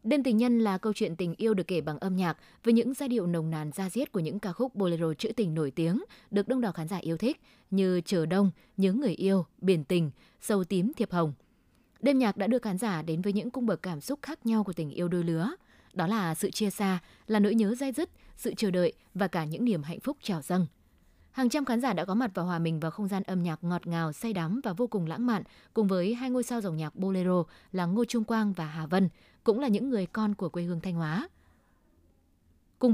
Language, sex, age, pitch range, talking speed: Vietnamese, female, 20-39, 175-230 Hz, 255 wpm